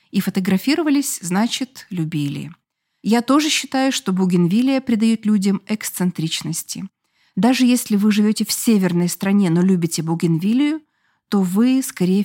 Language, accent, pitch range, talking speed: Russian, native, 175-235 Hz, 125 wpm